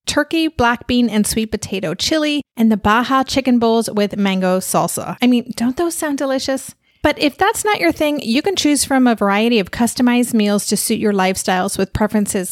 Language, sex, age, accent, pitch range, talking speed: English, female, 30-49, American, 215-270 Hz, 200 wpm